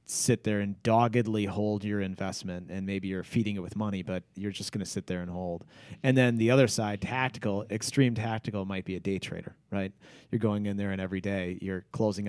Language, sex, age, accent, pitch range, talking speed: English, male, 30-49, American, 95-120 Hz, 225 wpm